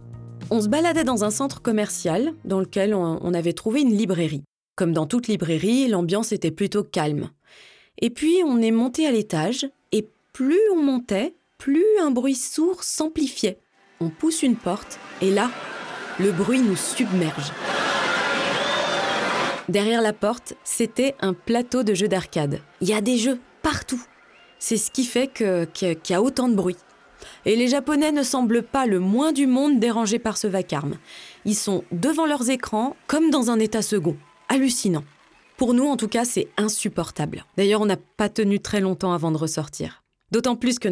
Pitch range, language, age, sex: 180-260 Hz, French, 20-39, female